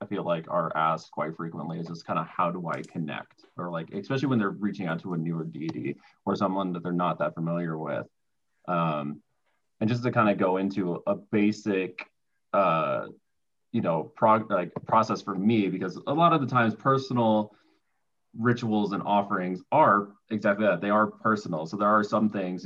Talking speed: 190 wpm